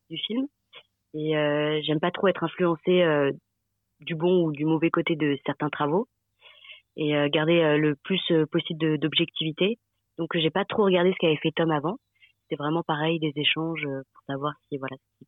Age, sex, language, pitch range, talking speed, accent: 20-39, female, French, 145-170 Hz, 200 wpm, French